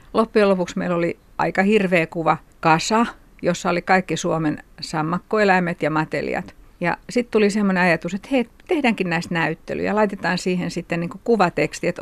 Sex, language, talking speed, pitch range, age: female, Finnish, 160 wpm, 170-210 Hz, 60-79